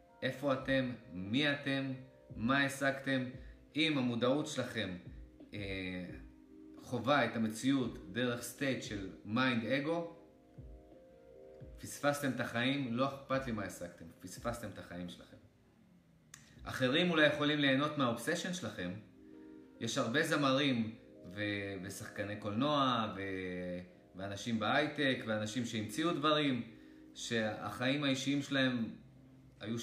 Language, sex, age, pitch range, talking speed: Hebrew, male, 30-49, 95-135 Hz, 105 wpm